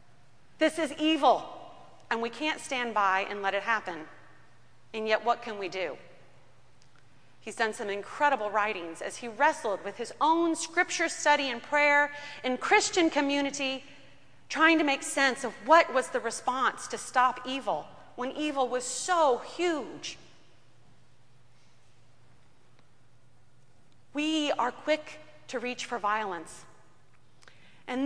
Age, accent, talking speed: 30-49, American, 130 wpm